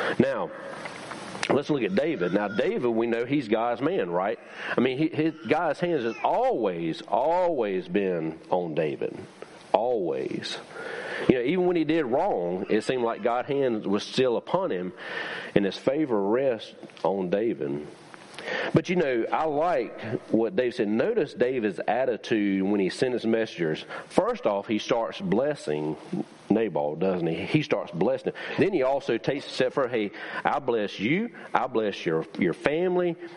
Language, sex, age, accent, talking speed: English, male, 40-59, American, 165 wpm